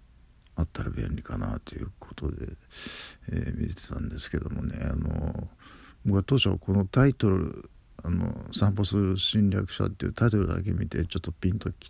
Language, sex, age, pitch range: Japanese, male, 50-69, 80-100 Hz